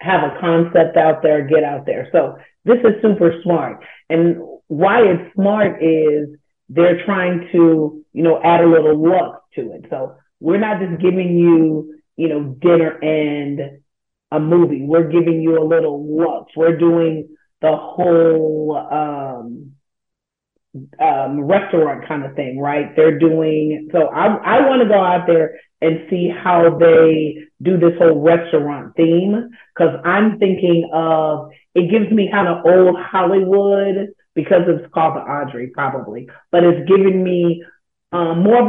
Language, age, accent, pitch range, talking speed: English, 40-59, American, 155-185 Hz, 160 wpm